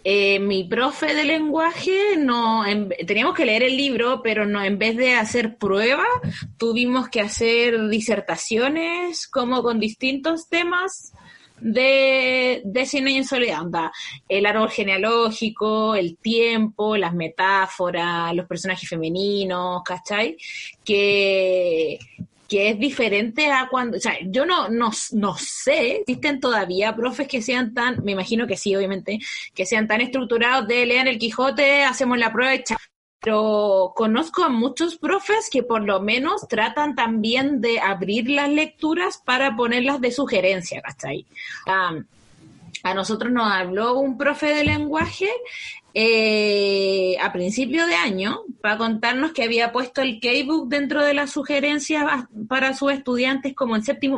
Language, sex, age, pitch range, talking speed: Spanish, female, 20-39, 205-285 Hz, 145 wpm